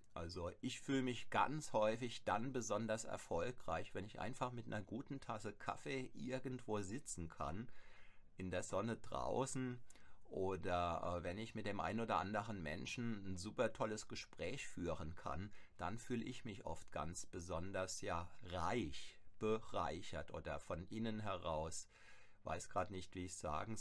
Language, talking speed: German, 150 wpm